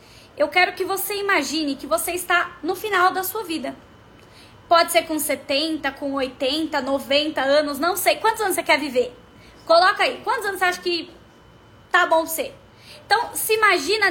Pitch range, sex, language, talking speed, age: 295-375 Hz, female, Portuguese, 175 wpm, 20-39